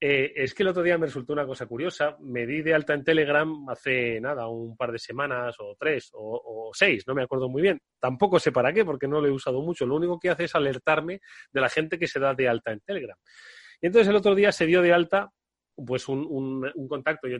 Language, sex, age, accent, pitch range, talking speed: Spanish, male, 30-49, Spanish, 130-180 Hz, 260 wpm